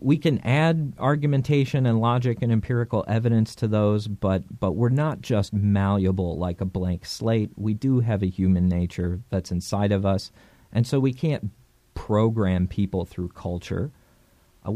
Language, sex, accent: English, male, American